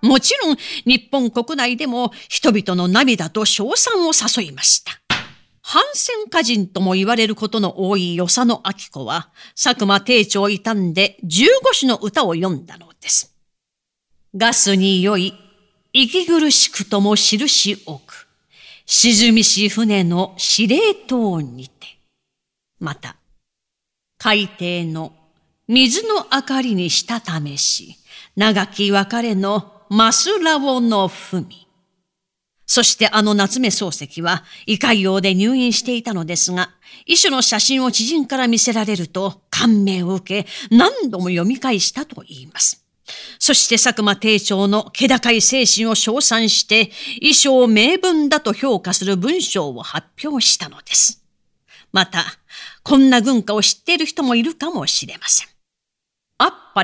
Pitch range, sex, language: 190-255 Hz, female, Japanese